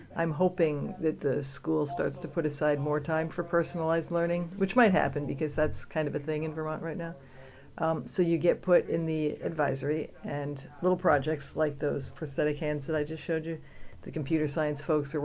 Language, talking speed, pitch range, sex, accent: English, 205 wpm, 145-160 Hz, female, American